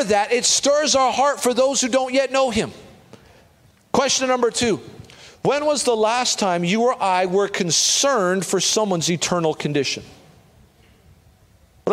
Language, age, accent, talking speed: English, 40-59, American, 150 wpm